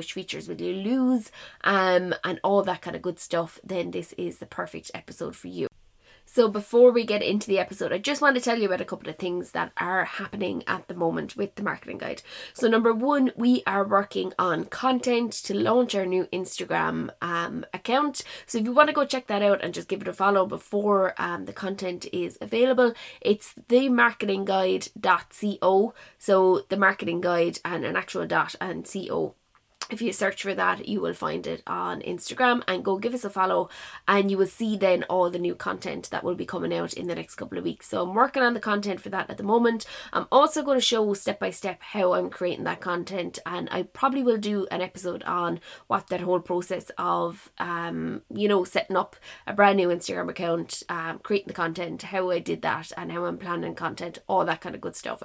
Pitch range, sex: 180-230 Hz, female